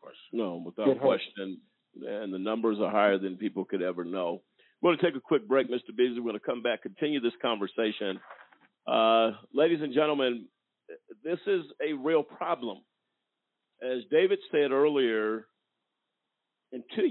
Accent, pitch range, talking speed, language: American, 120-175 Hz, 155 wpm, English